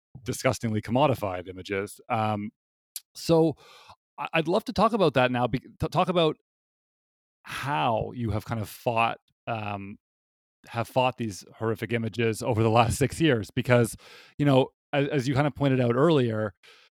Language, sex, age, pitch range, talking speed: English, male, 30-49, 115-145 Hz, 150 wpm